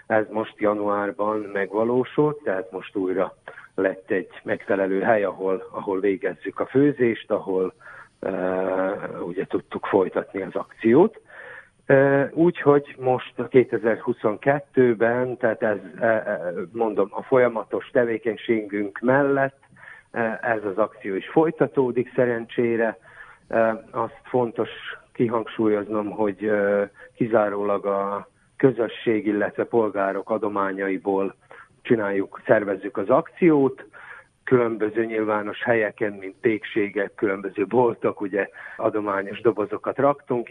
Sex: male